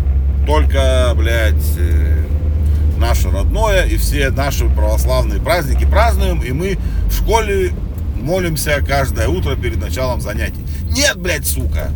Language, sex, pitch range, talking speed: Russian, male, 70-80 Hz, 120 wpm